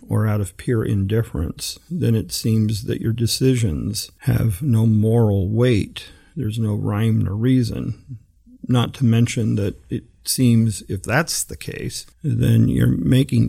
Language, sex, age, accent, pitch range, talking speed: English, male, 50-69, American, 100-120 Hz, 145 wpm